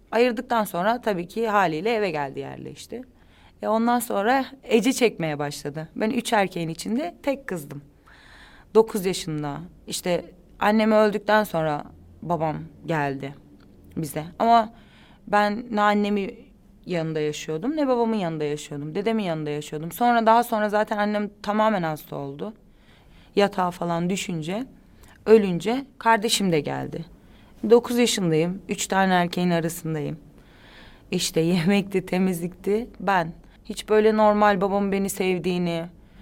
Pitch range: 160-215 Hz